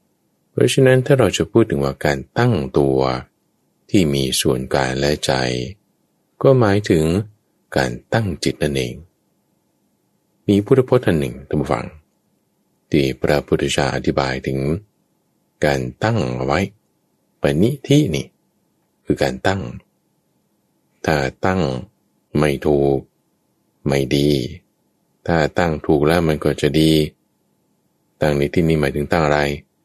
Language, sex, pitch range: English, male, 70-95 Hz